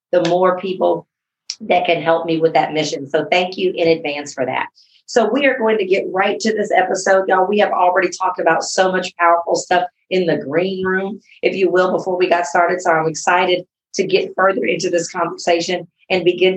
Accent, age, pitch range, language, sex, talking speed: American, 40-59, 170-220 Hz, English, female, 215 wpm